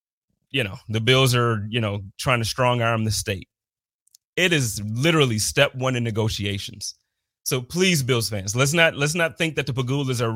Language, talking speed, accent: English, 190 wpm, American